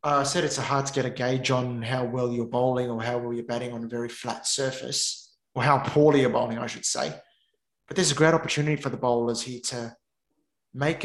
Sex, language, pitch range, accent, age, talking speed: male, English, 125-145 Hz, Australian, 20-39, 240 wpm